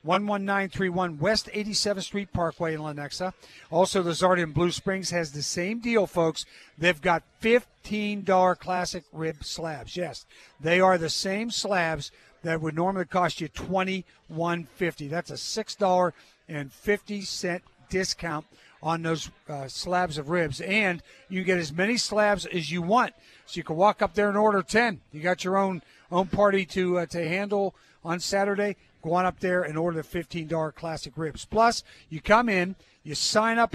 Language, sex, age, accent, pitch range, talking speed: English, male, 50-69, American, 160-200 Hz, 170 wpm